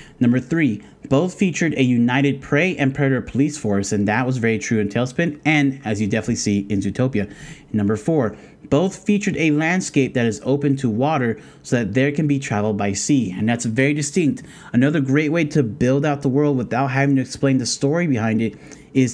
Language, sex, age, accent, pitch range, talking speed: English, male, 30-49, American, 115-140 Hz, 205 wpm